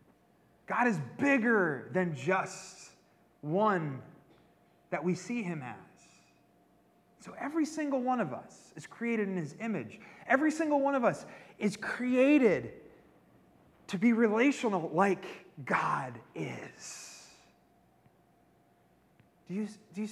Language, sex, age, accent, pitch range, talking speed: English, male, 30-49, American, 165-235 Hz, 115 wpm